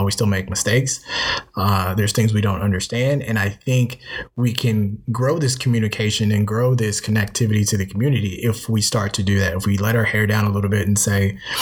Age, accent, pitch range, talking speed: 20-39, American, 100-115 Hz, 215 wpm